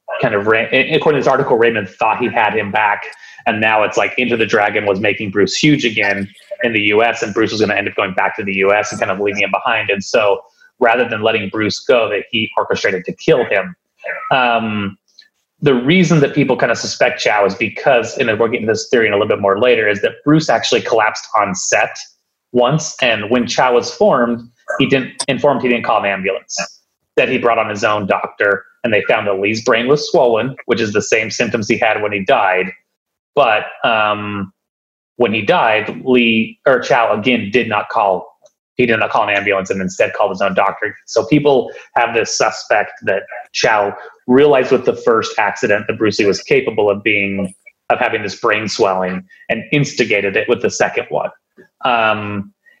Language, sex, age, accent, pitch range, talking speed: English, male, 30-49, American, 100-145 Hz, 205 wpm